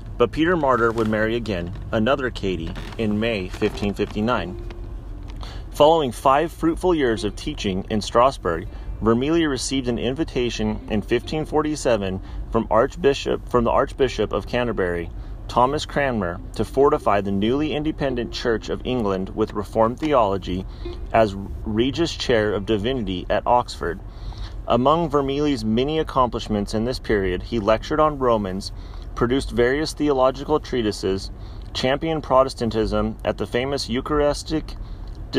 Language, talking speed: English, 125 wpm